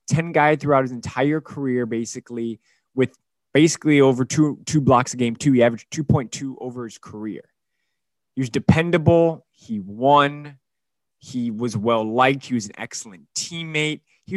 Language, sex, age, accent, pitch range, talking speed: English, male, 20-39, American, 115-145 Hz, 150 wpm